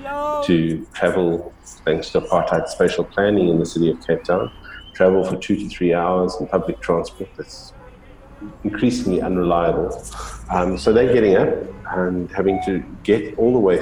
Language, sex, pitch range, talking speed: English, male, 90-115 Hz, 160 wpm